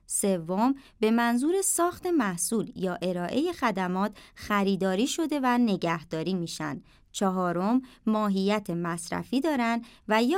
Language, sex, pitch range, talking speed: Persian, male, 175-240 Hz, 110 wpm